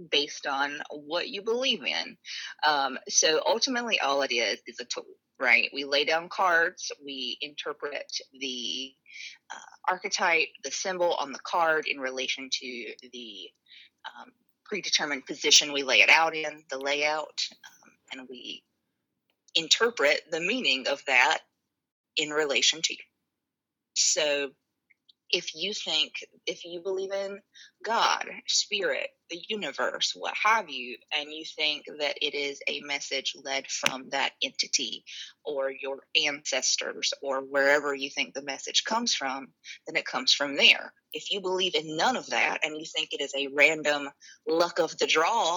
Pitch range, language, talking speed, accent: 140-195 Hz, English, 155 wpm, American